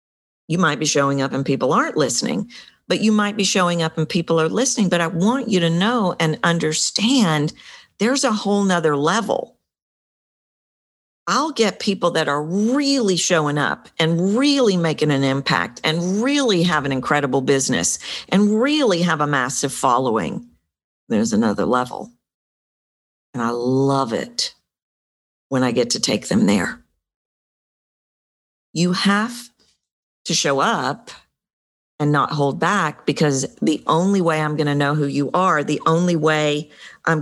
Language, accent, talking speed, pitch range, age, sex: English, American, 155 wpm, 140-185 Hz, 50-69, female